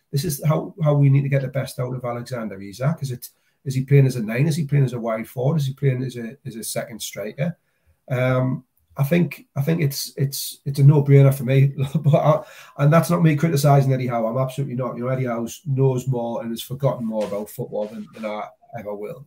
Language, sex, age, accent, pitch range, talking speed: English, male, 30-49, British, 120-140 Hz, 250 wpm